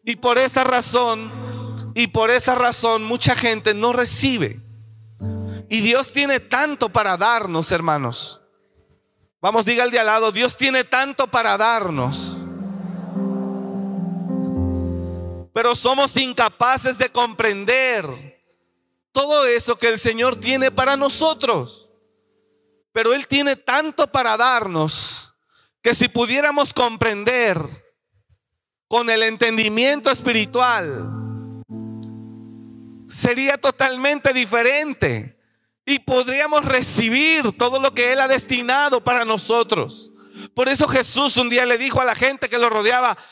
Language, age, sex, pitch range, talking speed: Spanish, 40-59, male, 195-260 Hz, 115 wpm